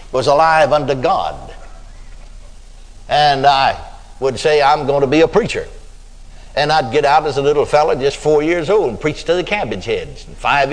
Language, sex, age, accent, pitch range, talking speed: English, male, 60-79, American, 125-160 Hz, 190 wpm